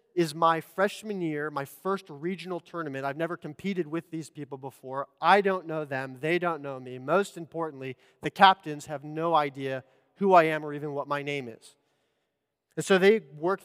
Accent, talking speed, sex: American, 190 wpm, male